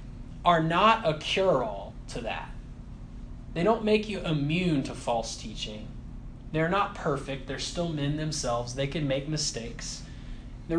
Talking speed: 145 wpm